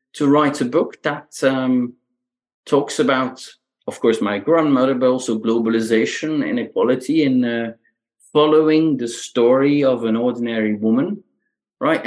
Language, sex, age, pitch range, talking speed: English, male, 30-49, 110-155 Hz, 130 wpm